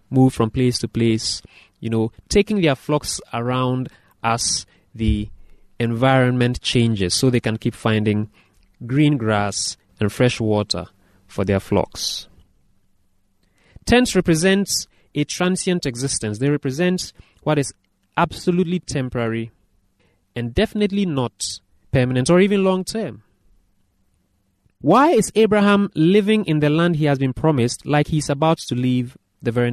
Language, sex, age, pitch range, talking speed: English, male, 30-49, 95-160 Hz, 130 wpm